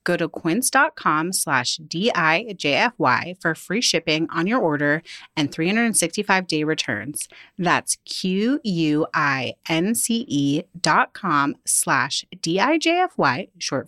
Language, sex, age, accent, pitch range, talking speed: English, female, 30-49, American, 155-225 Hz, 90 wpm